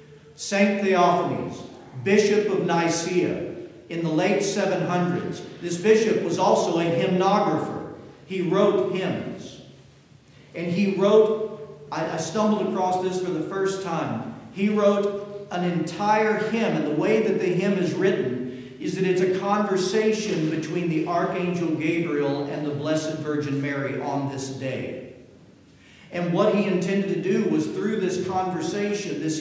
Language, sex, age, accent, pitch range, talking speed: English, male, 50-69, American, 150-195 Hz, 145 wpm